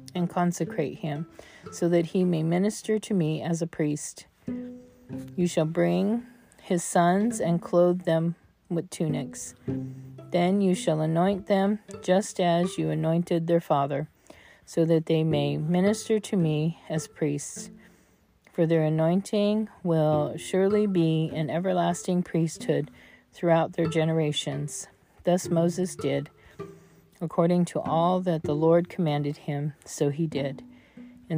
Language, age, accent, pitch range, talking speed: English, 40-59, American, 155-185 Hz, 135 wpm